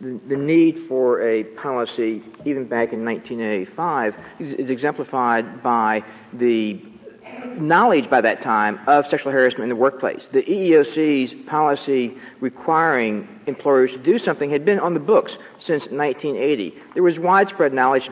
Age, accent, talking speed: 50-69, American, 140 wpm